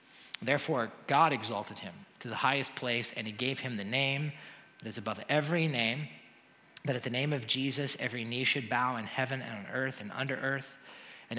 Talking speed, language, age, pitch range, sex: 200 wpm, English, 30-49, 120-145 Hz, male